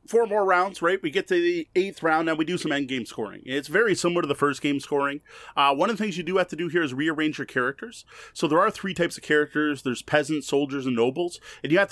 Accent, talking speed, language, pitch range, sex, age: American, 275 wpm, English, 130-180 Hz, male, 30-49